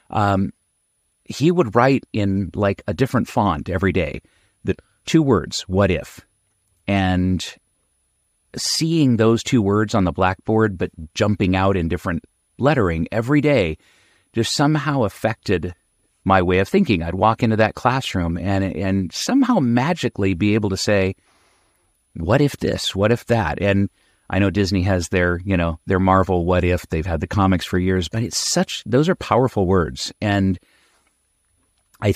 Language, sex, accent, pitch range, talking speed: English, male, American, 90-110 Hz, 160 wpm